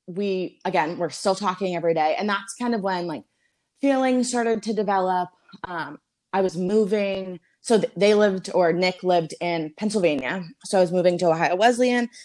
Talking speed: 180 wpm